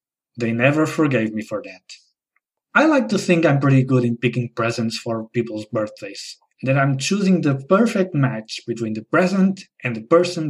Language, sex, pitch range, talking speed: English, male, 125-200 Hz, 175 wpm